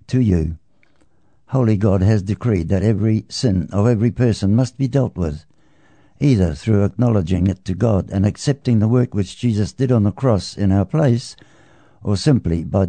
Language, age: English, 60-79